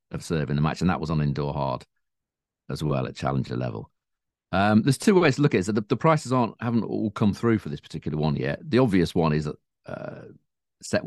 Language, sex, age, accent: English, male, 40-59, British